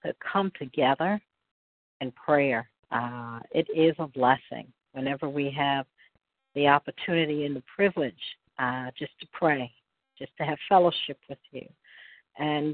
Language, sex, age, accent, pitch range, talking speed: English, female, 50-69, American, 135-170 Hz, 135 wpm